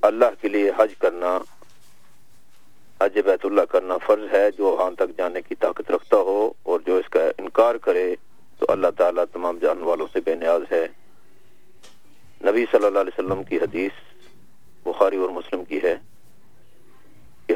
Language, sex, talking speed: English, male, 155 wpm